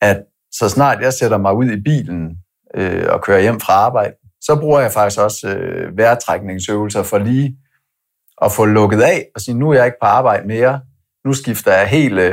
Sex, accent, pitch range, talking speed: male, native, 100-125 Hz, 185 wpm